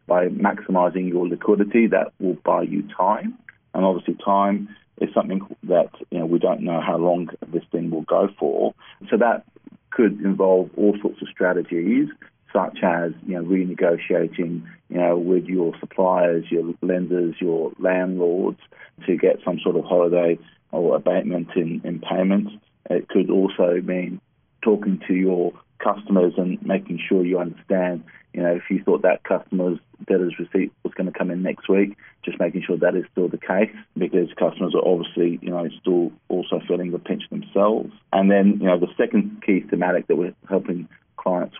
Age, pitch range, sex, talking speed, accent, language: 40-59, 90-95 Hz, male, 175 wpm, British, English